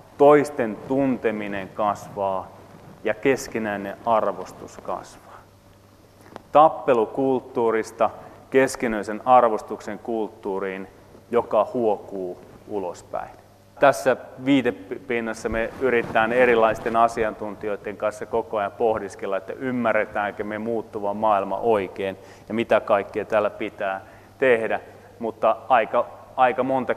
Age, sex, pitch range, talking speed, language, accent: 30-49, male, 100-125 Hz, 90 wpm, Finnish, native